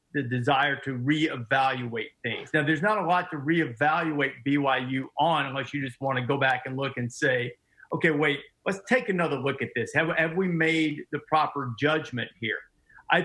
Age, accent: 50-69, American